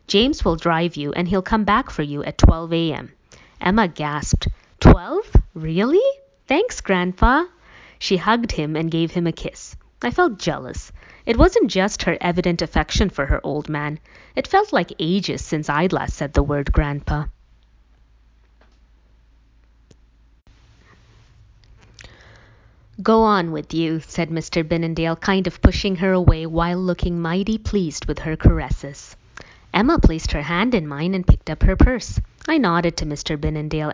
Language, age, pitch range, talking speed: English, 20-39, 145-190 Hz, 155 wpm